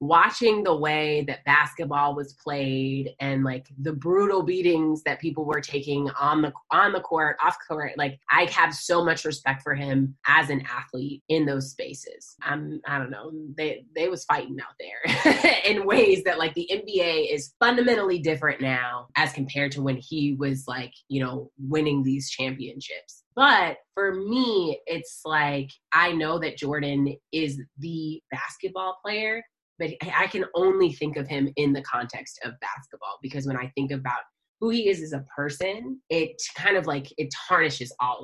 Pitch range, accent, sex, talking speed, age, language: 140-185 Hz, American, female, 175 wpm, 20-39, English